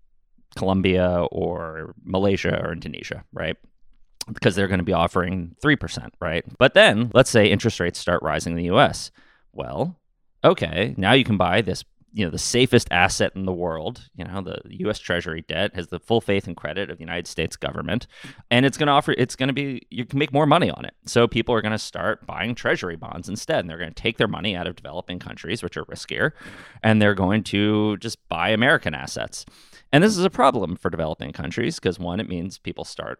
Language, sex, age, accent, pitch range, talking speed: English, male, 30-49, American, 85-115 Hz, 215 wpm